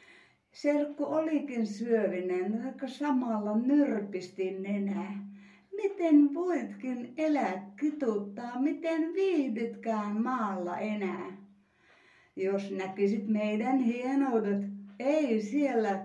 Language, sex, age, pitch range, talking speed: Finnish, female, 60-79, 195-255 Hz, 80 wpm